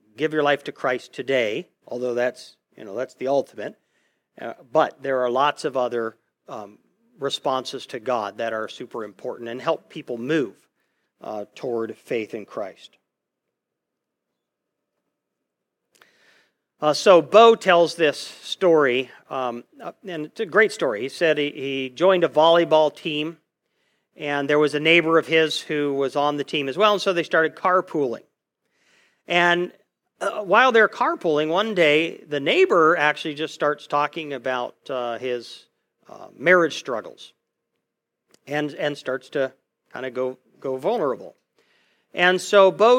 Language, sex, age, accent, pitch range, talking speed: English, male, 50-69, American, 135-170 Hz, 150 wpm